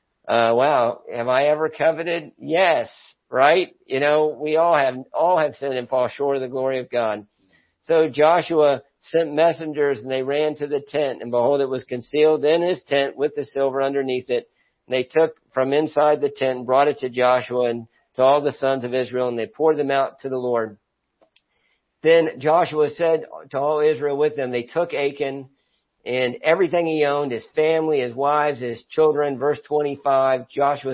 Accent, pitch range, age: American, 120-150 Hz, 50-69